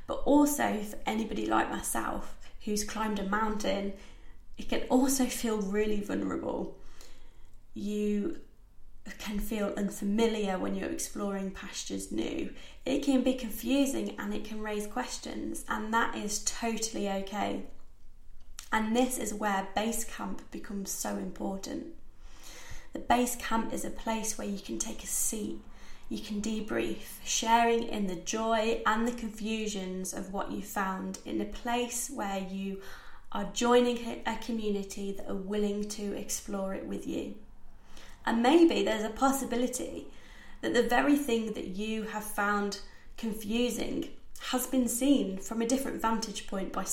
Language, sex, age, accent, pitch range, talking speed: English, female, 20-39, British, 200-235 Hz, 145 wpm